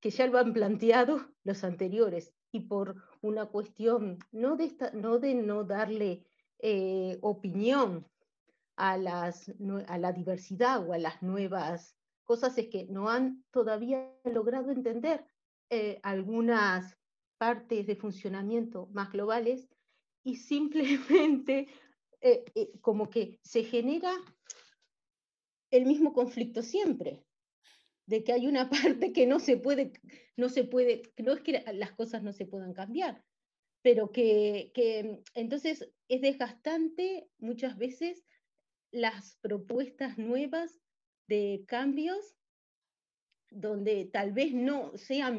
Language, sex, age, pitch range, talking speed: Spanish, female, 40-59, 205-265 Hz, 120 wpm